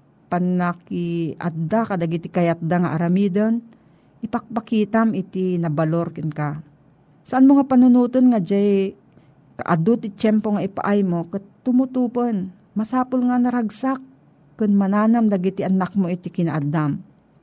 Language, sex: Filipino, female